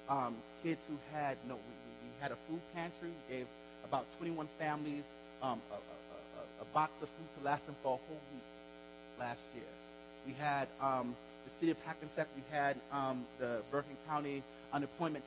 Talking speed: 190 wpm